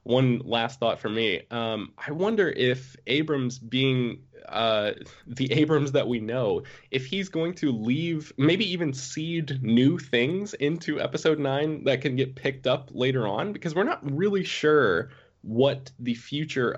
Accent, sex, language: American, male, English